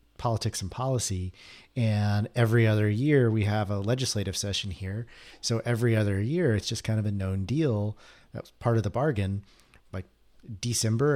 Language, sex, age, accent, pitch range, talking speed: English, male, 40-59, American, 105-130 Hz, 165 wpm